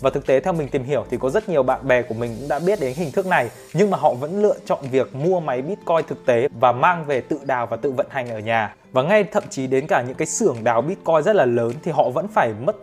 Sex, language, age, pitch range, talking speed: male, Vietnamese, 20-39, 135-190 Hz, 300 wpm